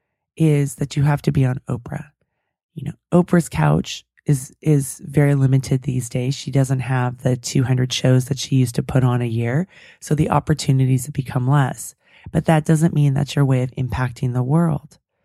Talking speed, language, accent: 195 wpm, English, American